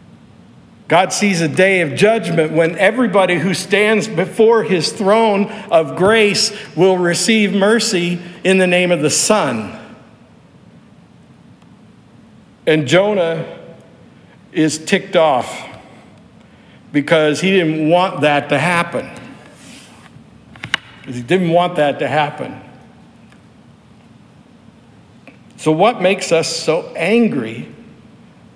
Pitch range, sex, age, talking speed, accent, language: 155-195 Hz, male, 60-79, 100 wpm, American, English